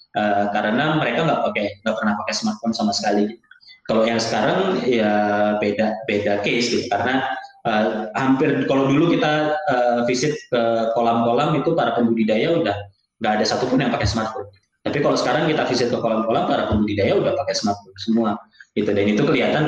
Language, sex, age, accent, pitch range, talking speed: Indonesian, male, 20-39, native, 105-135 Hz, 170 wpm